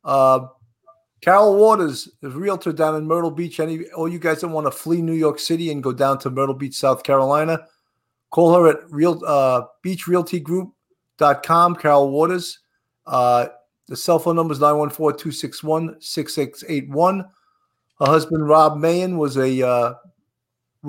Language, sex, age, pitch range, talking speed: English, male, 50-69, 140-180 Hz, 145 wpm